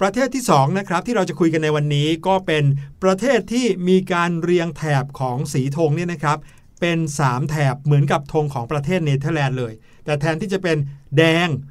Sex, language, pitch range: male, Thai, 140-180 Hz